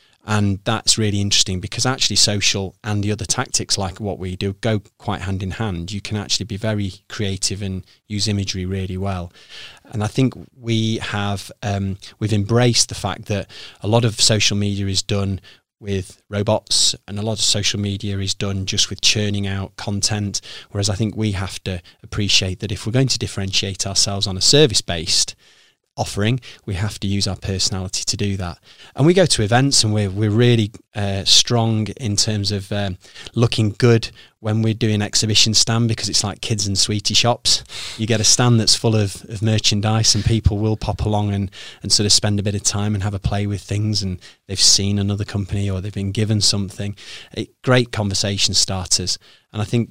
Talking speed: 195 wpm